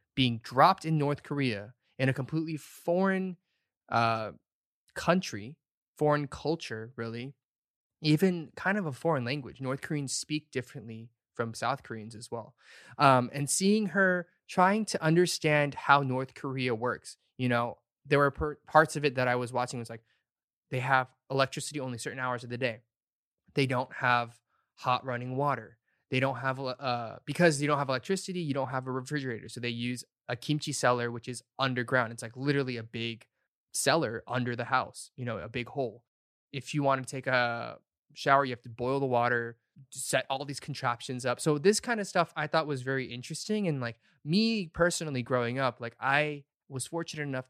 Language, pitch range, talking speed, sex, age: English, 120-150 Hz, 180 wpm, male, 20-39